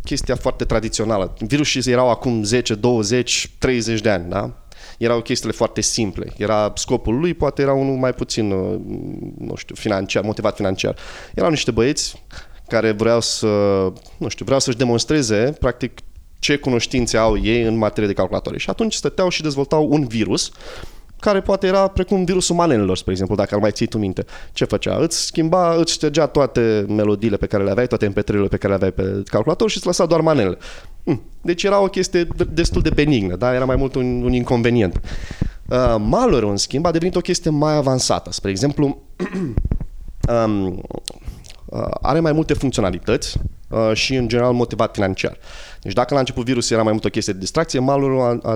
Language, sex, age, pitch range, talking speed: Romanian, male, 20-39, 100-135 Hz, 175 wpm